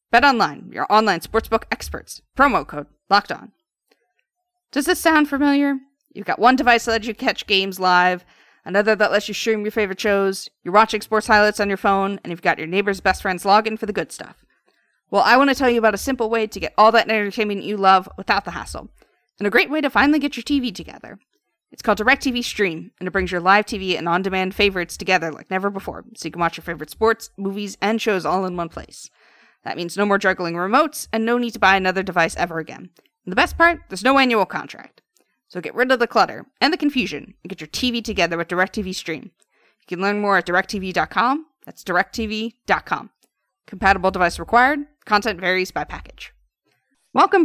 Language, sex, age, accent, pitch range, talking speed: English, female, 30-49, American, 185-245 Hz, 215 wpm